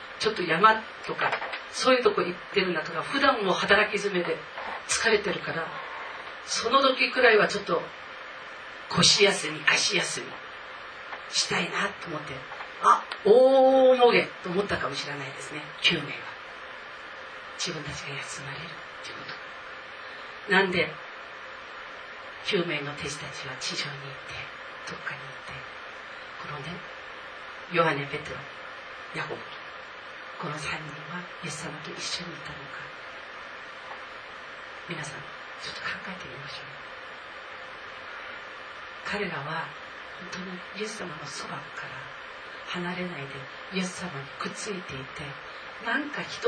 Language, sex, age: Japanese, female, 40-59